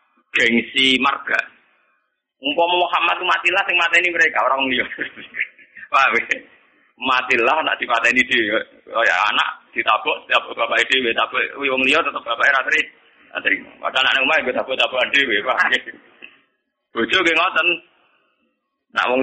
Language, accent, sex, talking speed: Indonesian, native, male, 130 wpm